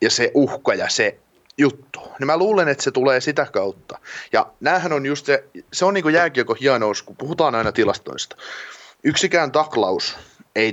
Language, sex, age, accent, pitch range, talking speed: Finnish, male, 30-49, native, 110-140 Hz, 175 wpm